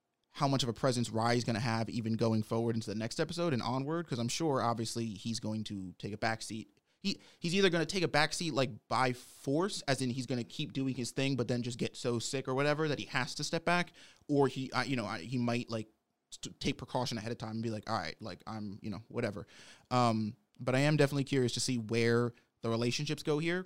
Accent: American